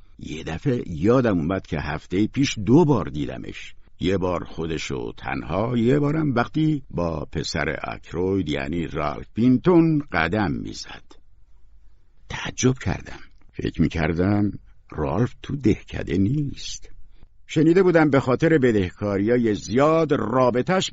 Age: 60-79